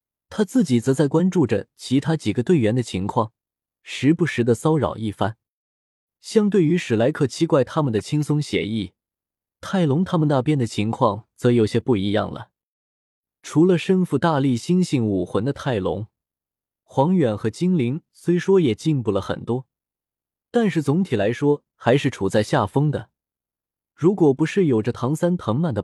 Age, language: 20-39, Chinese